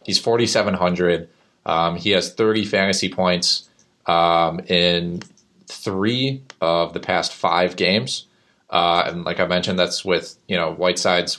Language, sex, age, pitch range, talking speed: English, male, 20-39, 85-95 Hz, 135 wpm